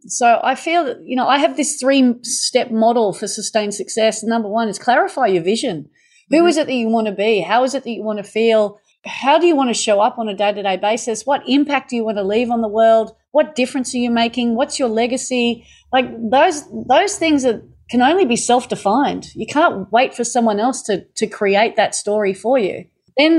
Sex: female